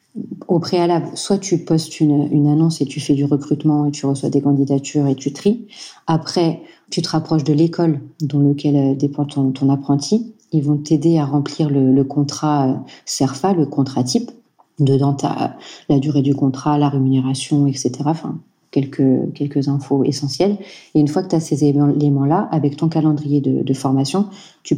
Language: French